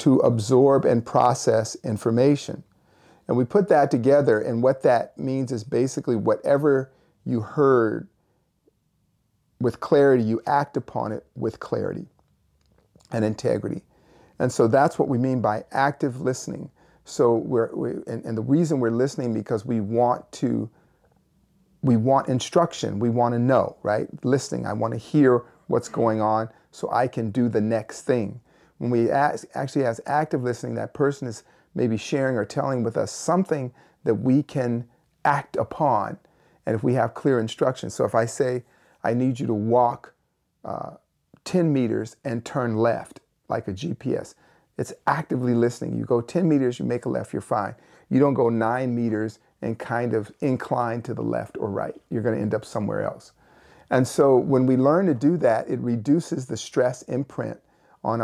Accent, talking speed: American, 170 wpm